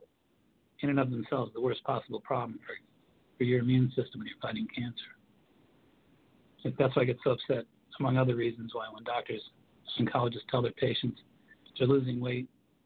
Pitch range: 120-135 Hz